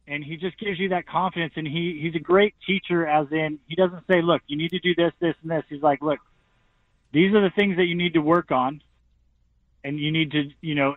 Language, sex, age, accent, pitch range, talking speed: English, male, 30-49, American, 150-185 Hz, 250 wpm